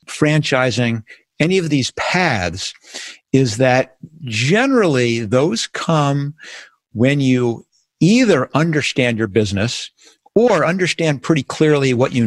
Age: 60-79